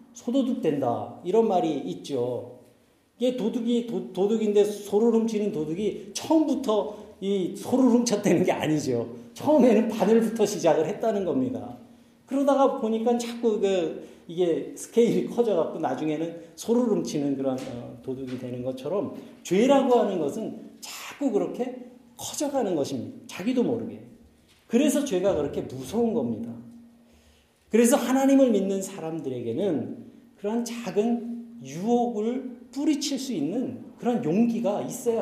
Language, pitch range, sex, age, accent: Korean, 195-250 Hz, male, 40-59, native